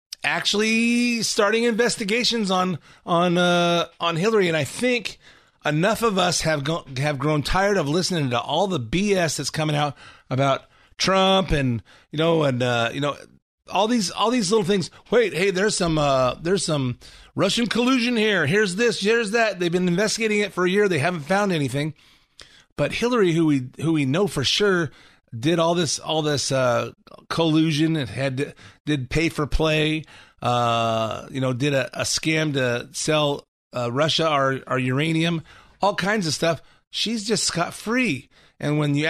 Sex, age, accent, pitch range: male, 30-49, American, 145-205 Hz